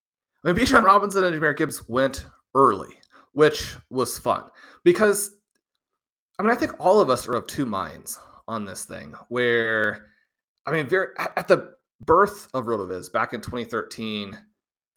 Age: 30-49